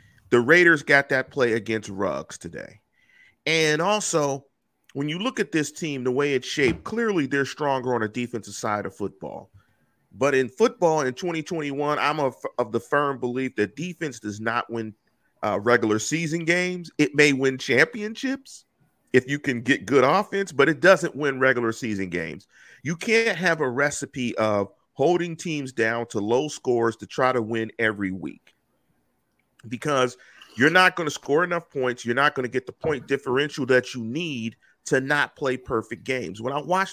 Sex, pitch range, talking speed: male, 120-165 Hz, 180 wpm